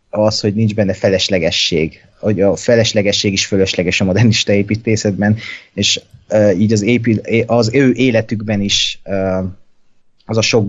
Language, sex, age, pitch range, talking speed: Hungarian, male, 30-49, 100-110 Hz, 145 wpm